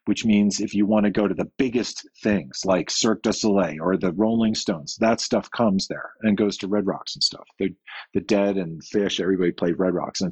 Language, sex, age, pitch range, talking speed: English, male, 40-59, 95-115 Hz, 235 wpm